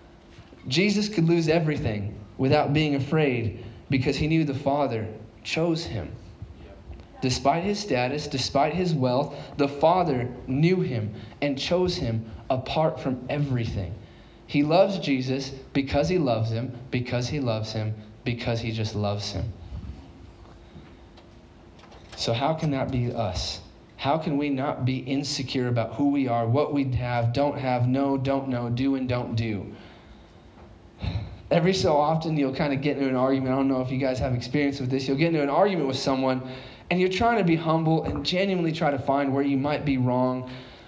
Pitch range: 120-155 Hz